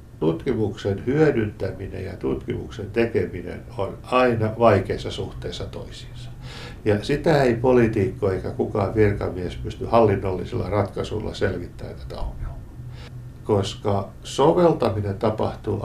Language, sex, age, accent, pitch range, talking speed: Finnish, male, 60-79, native, 105-125 Hz, 95 wpm